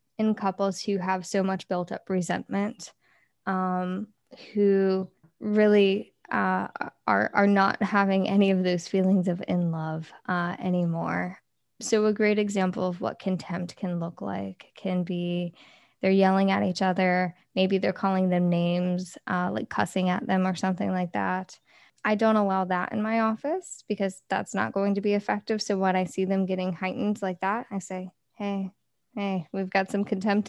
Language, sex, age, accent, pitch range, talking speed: English, female, 10-29, American, 185-210 Hz, 175 wpm